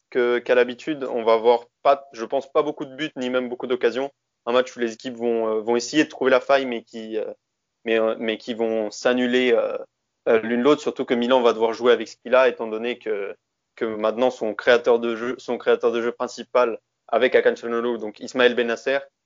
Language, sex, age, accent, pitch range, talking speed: French, male, 20-39, French, 115-130 Hz, 210 wpm